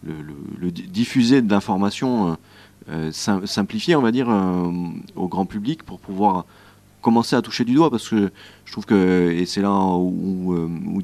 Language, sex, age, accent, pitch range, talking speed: French, male, 30-49, French, 90-110 Hz, 180 wpm